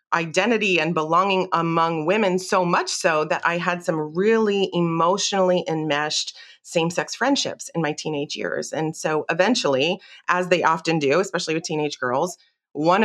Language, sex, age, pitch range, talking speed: English, female, 30-49, 160-195 Hz, 150 wpm